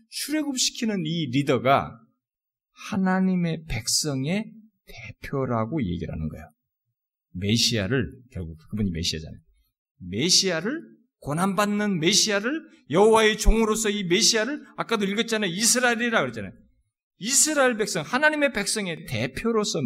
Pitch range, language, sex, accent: 125-210 Hz, Korean, male, native